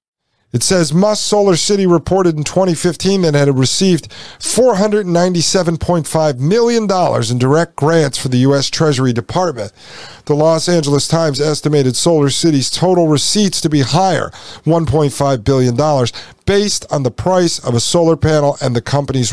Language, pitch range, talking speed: English, 130-185 Hz, 145 wpm